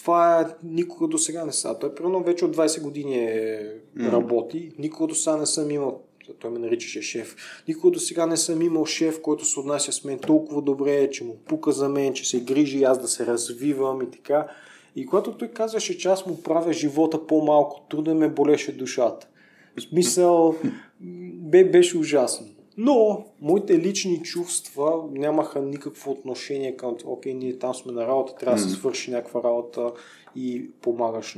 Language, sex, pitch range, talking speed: Bulgarian, male, 125-170 Hz, 180 wpm